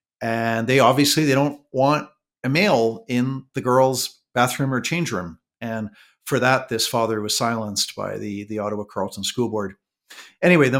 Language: English